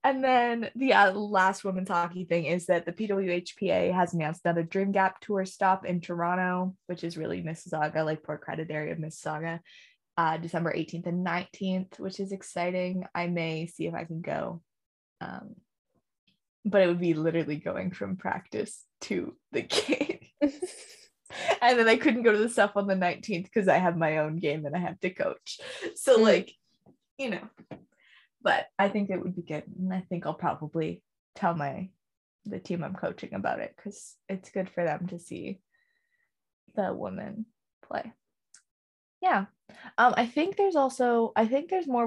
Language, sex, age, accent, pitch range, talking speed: English, female, 20-39, American, 170-225 Hz, 175 wpm